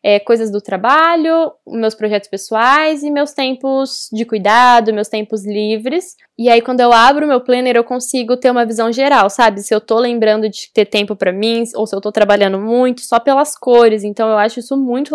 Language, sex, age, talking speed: Portuguese, female, 10-29, 205 wpm